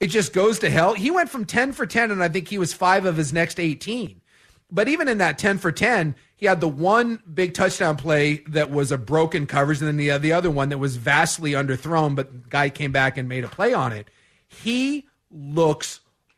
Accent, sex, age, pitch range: American, male, 40-59, 140-190 Hz